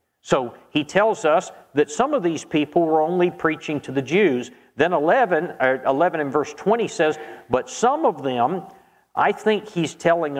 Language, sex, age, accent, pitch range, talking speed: English, male, 50-69, American, 130-165 Hz, 180 wpm